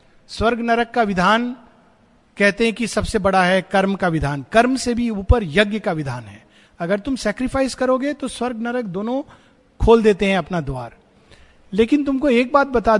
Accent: native